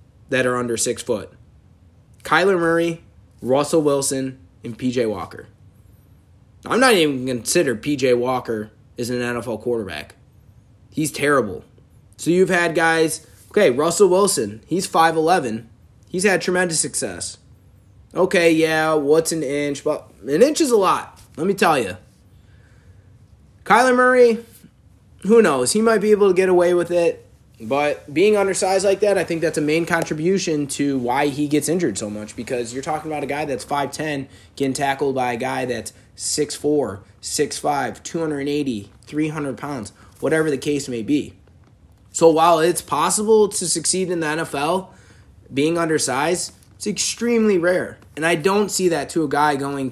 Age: 20-39